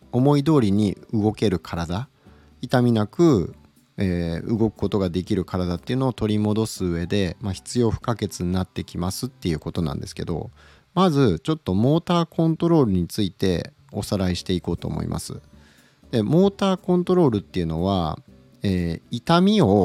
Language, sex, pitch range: Japanese, male, 95-145 Hz